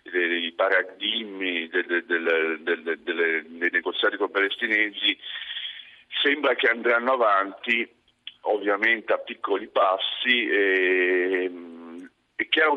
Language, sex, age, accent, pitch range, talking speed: Italian, male, 50-69, native, 90-150 Hz, 80 wpm